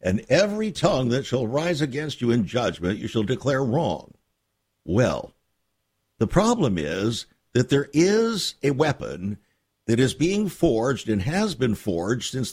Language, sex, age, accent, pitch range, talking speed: English, male, 60-79, American, 105-160 Hz, 155 wpm